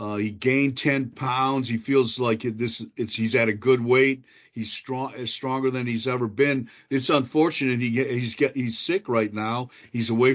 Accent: American